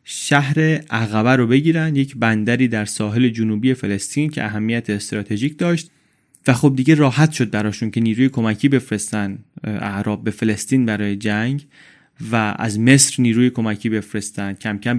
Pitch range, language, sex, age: 110-145 Hz, Persian, male, 30-49